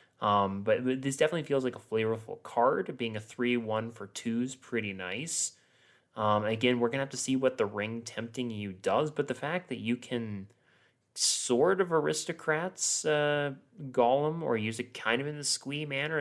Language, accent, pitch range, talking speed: English, American, 105-135 Hz, 190 wpm